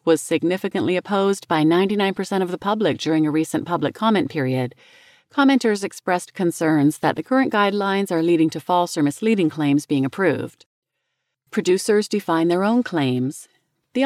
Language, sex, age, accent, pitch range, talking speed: English, female, 40-59, American, 150-205 Hz, 155 wpm